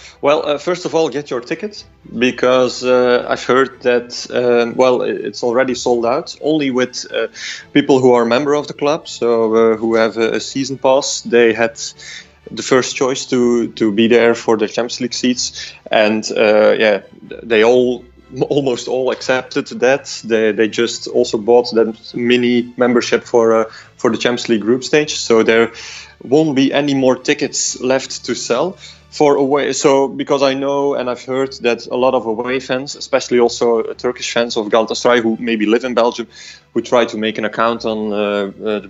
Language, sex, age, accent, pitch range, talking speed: English, male, 30-49, Belgian, 115-135 Hz, 185 wpm